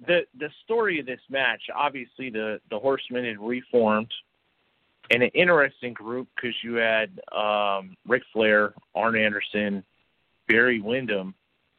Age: 40-59